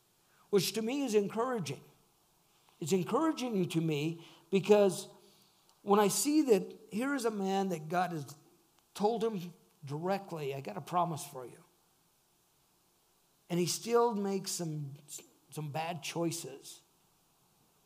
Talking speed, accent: 130 wpm, American